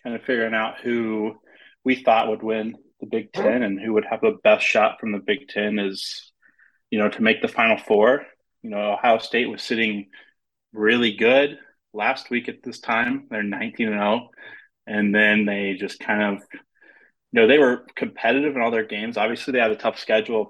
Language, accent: English, American